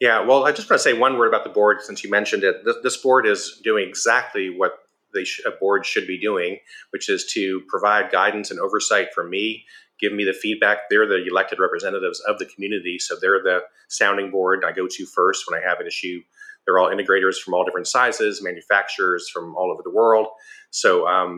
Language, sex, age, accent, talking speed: English, male, 30-49, American, 215 wpm